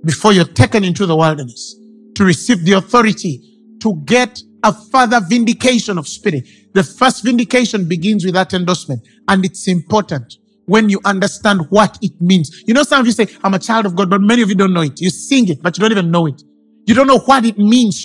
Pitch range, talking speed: 195-260 Hz, 220 wpm